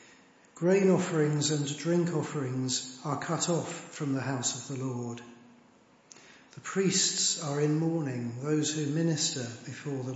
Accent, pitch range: British, 135-170 Hz